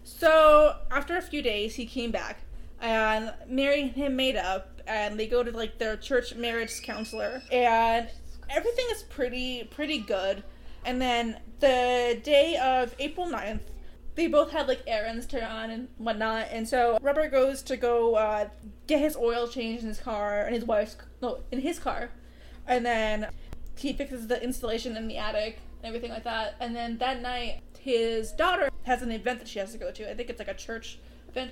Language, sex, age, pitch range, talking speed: English, female, 20-39, 225-265 Hz, 190 wpm